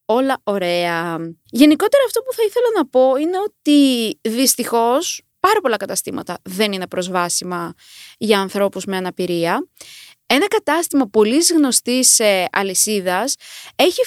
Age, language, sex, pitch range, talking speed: 20-39, Greek, female, 195-315 Hz, 120 wpm